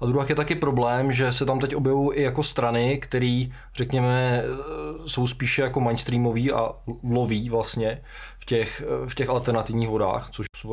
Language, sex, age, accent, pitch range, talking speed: Czech, male, 20-39, native, 110-135 Hz, 160 wpm